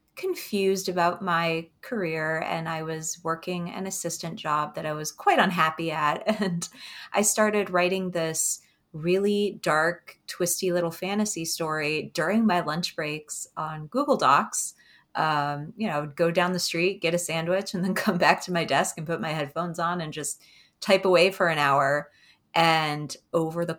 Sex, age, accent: female, 30-49, American